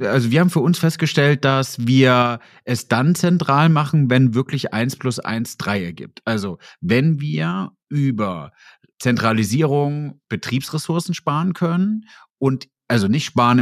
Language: German